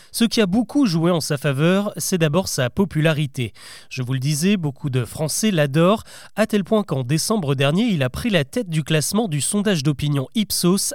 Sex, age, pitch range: male, 30-49, 145-195 Hz